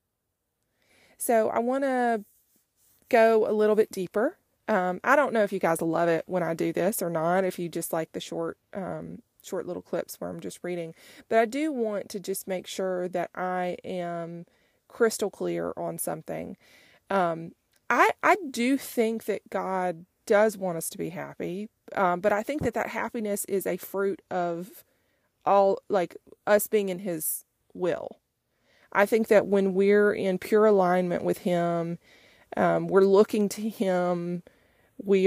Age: 30-49